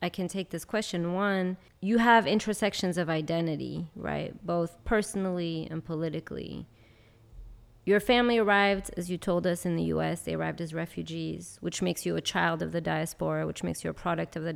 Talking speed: 185 wpm